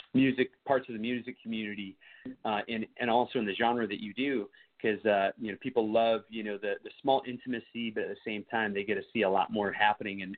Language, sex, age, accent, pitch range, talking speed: English, male, 30-49, American, 105-135 Hz, 245 wpm